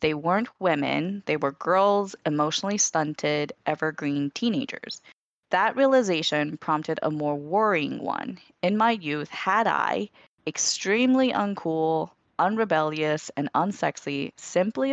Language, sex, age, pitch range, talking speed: English, female, 20-39, 150-185 Hz, 115 wpm